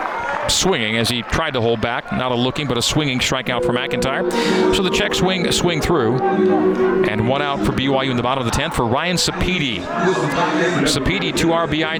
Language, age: English, 40-59